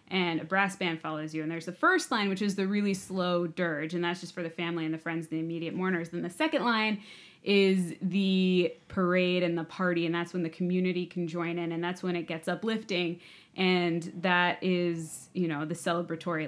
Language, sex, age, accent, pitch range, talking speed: English, female, 20-39, American, 160-185 Hz, 220 wpm